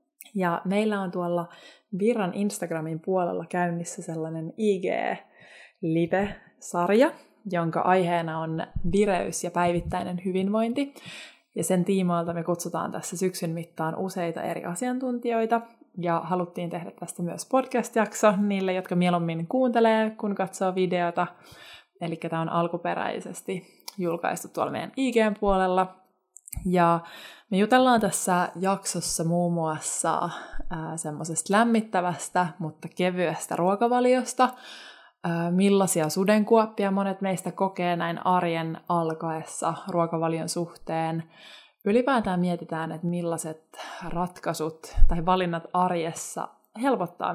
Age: 20-39